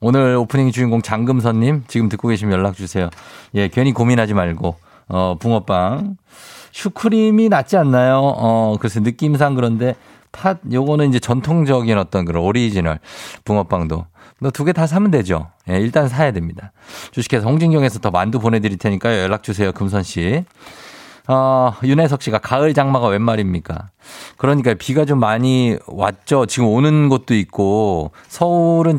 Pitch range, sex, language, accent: 105-145 Hz, male, Korean, native